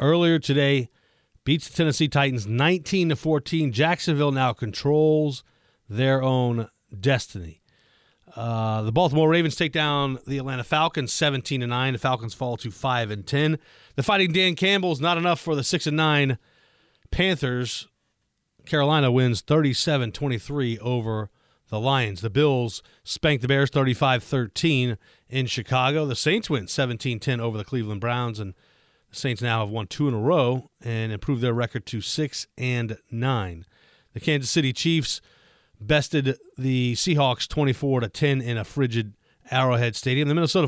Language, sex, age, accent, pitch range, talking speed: English, male, 40-59, American, 115-150 Hz, 155 wpm